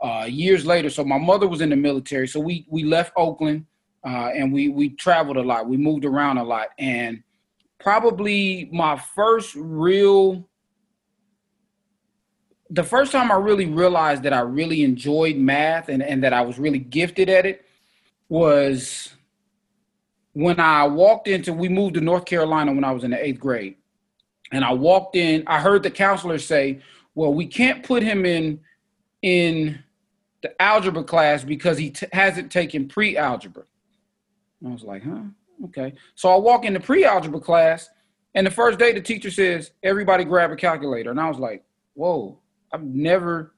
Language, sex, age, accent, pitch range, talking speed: English, male, 30-49, American, 150-200 Hz, 170 wpm